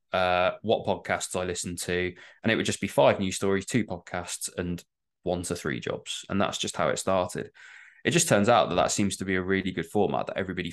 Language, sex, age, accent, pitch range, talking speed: English, male, 20-39, British, 90-105 Hz, 235 wpm